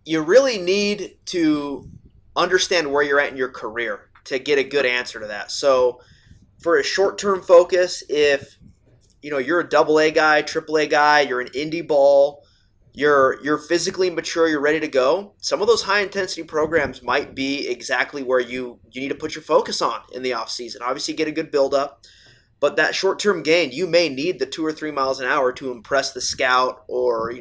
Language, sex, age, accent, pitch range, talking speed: English, male, 20-39, American, 130-160 Hz, 200 wpm